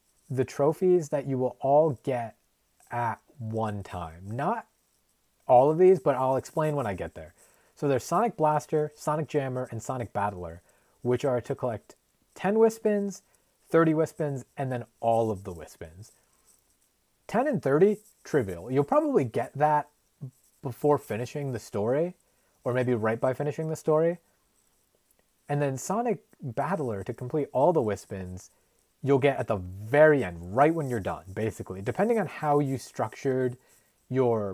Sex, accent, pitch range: male, American, 115-155 Hz